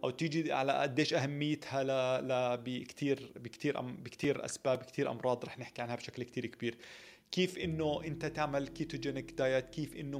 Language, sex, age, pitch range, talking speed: Arabic, male, 30-49, 120-150 Hz, 160 wpm